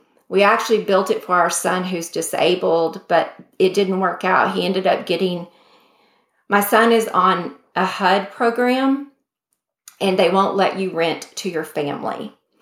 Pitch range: 175-210 Hz